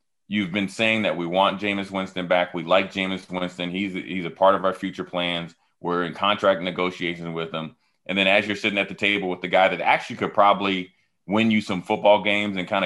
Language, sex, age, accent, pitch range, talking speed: English, male, 30-49, American, 90-105 Hz, 230 wpm